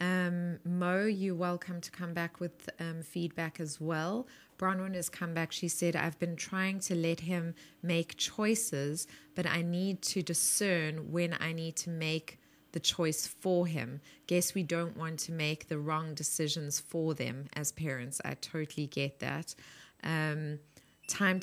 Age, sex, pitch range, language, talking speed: 20-39, female, 150-175 Hz, English, 165 wpm